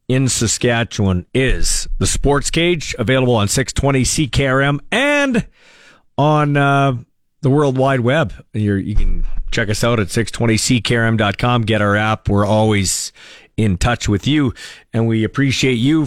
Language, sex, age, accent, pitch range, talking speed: English, male, 40-59, American, 115-155 Hz, 140 wpm